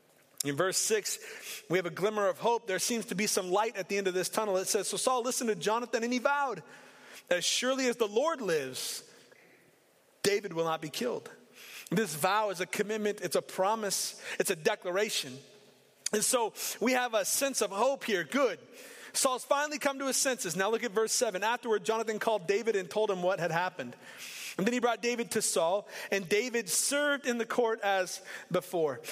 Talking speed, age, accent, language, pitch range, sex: 205 wpm, 30-49, American, English, 185-245 Hz, male